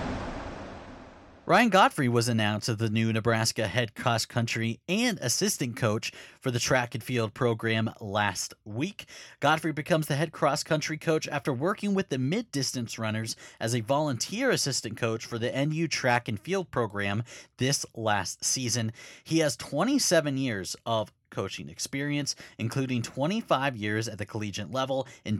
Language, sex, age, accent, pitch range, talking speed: English, male, 30-49, American, 110-145 Hz, 155 wpm